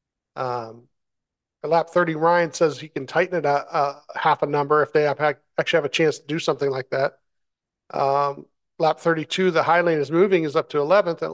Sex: male